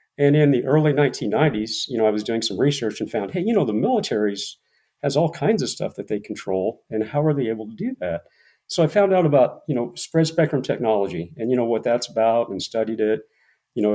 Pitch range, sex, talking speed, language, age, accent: 105-125 Hz, male, 240 wpm, English, 40-59, American